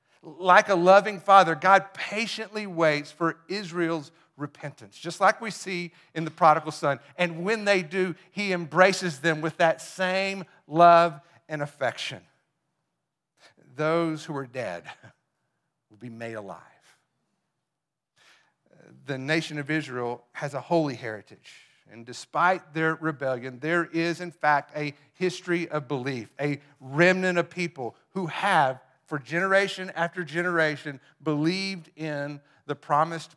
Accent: American